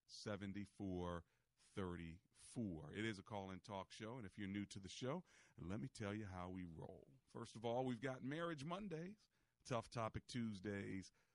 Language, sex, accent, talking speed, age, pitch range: English, male, American, 165 wpm, 40-59, 100-125 Hz